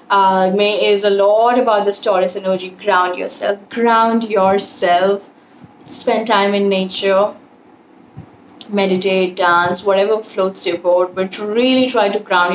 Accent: Indian